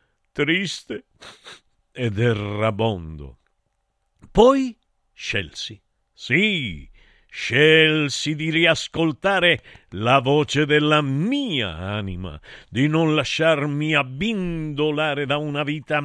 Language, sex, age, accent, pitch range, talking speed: Italian, male, 50-69, native, 110-180 Hz, 80 wpm